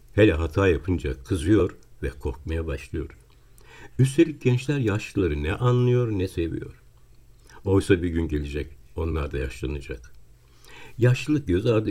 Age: 60-79